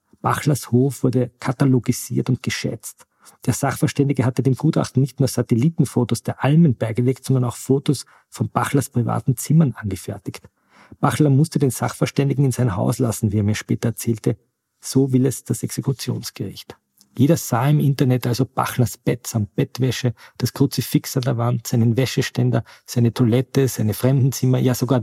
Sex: male